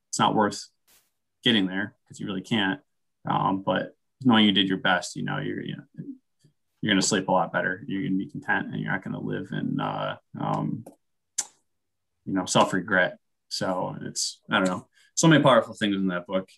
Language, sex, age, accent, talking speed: English, male, 20-39, American, 185 wpm